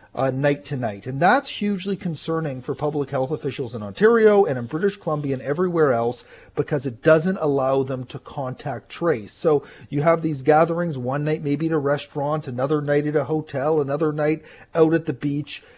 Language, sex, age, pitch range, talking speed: English, male, 40-59, 145-180 Hz, 195 wpm